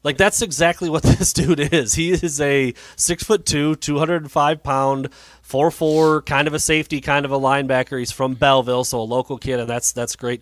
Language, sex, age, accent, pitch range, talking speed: English, male, 30-49, American, 110-140 Hz, 205 wpm